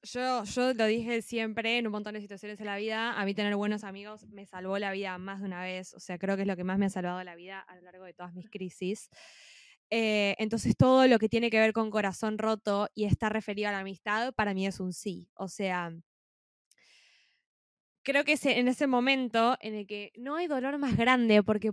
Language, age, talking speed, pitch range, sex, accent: Spanish, 20-39, 235 wpm, 200-265 Hz, female, Argentinian